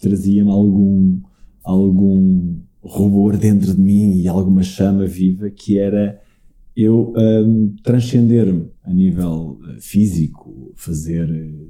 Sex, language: male, Portuguese